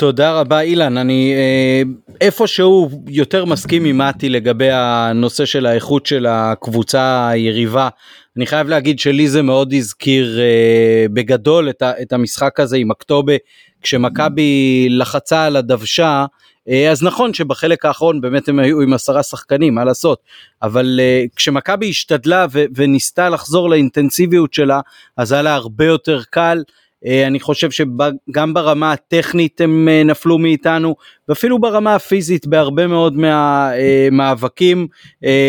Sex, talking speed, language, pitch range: male, 120 wpm, Hebrew, 135-160 Hz